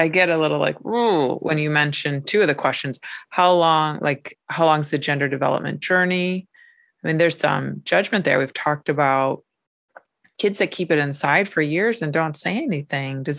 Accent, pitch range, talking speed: American, 135-175 Hz, 190 wpm